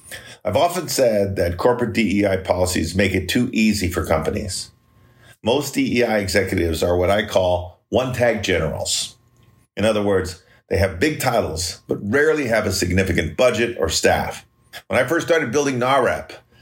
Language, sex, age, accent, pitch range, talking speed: English, male, 50-69, American, 95-120 Hz, 155 wpm